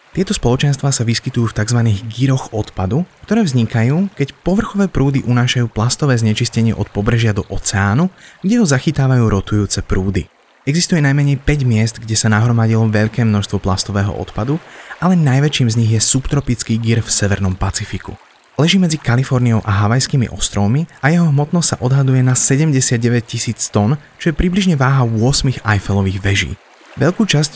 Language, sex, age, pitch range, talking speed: Slovak, male, 20-39, 110-145 Hz, 150 wpm